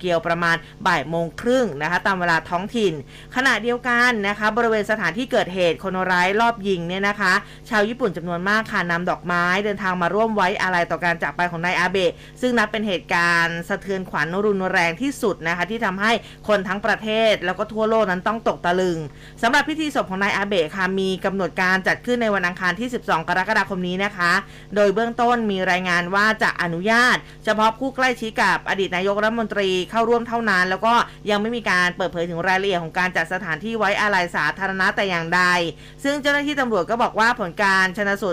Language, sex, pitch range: Thai, female, 175-220 Hz